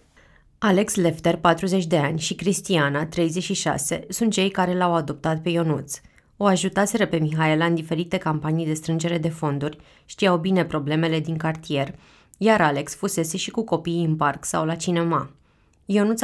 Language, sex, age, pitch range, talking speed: Romanian, female, 20-39, 155-185 Hz, 160 wpm